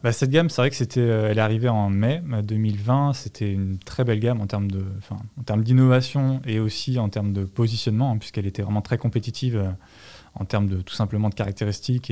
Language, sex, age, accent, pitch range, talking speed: French, male, 20-39, French, 105-120 Hz, 225 wpm